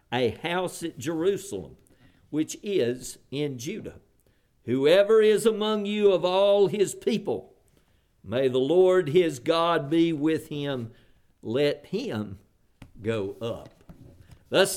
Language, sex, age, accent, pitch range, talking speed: English, male, 50-69, American, 130-175 Hz, 120 wpm